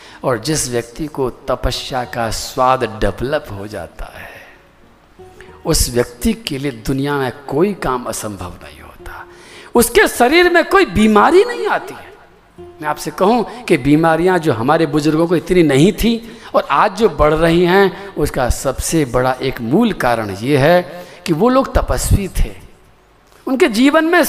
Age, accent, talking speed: 50-69, native, 160 wpm